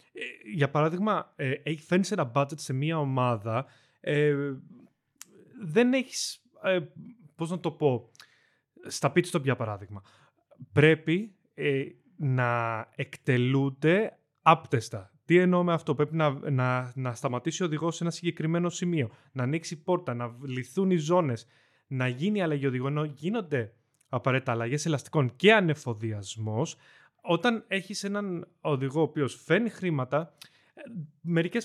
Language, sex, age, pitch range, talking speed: Greek, male, 30-49, 125-170 Hz, 120 wpm